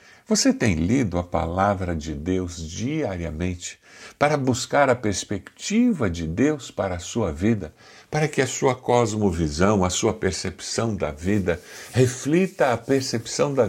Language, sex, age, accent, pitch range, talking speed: Portuguese, male, 60-79, Brazilian, 90-130 Hz, 140 wpm